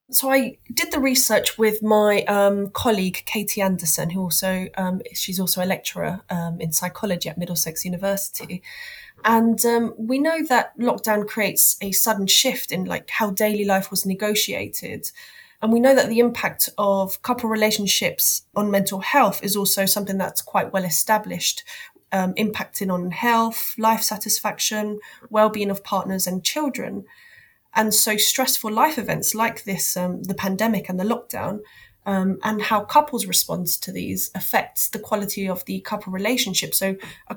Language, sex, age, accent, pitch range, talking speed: English, female, 20-39, British, 190-230 Hz, 160 wpm